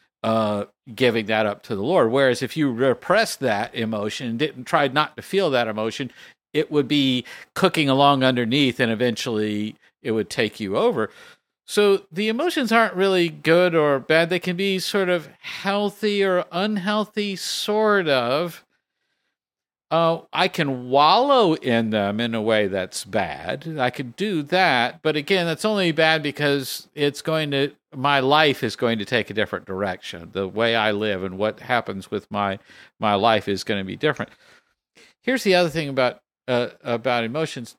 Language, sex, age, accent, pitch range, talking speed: English, male, 50-69, American, 115-170 Hz, 170 wpm